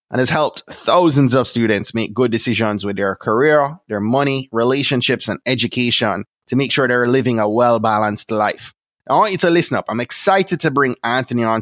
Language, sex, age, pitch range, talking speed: English, male, 20-39, 110-140 Hz, 190 wpm